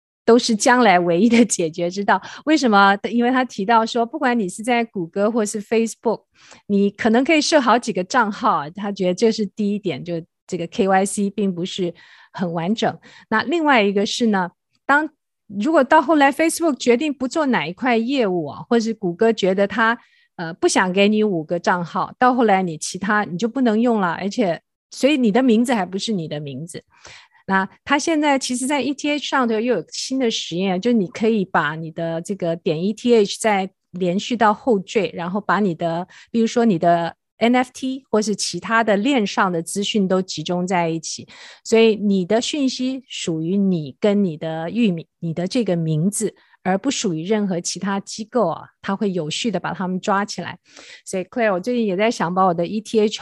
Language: Chinese